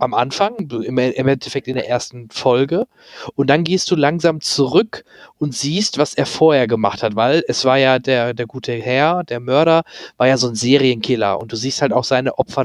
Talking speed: 205 wpm